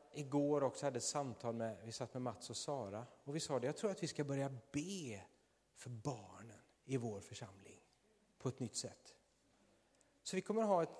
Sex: male